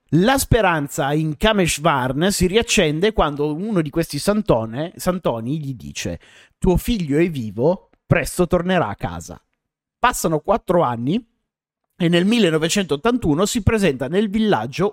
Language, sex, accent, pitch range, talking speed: Italian, male, native, 140-200 Hz, 130 wpm